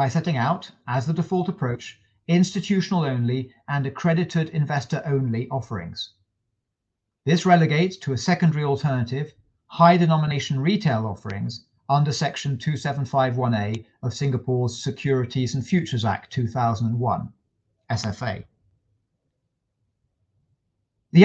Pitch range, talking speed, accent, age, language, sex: 110-155 Hz, 100 wpm, British, 40-59, English, male